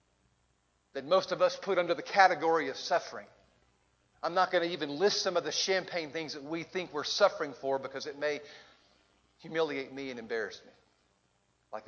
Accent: American